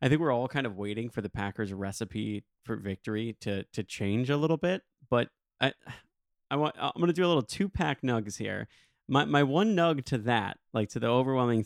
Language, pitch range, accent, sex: English, 105-140 Hz, American, male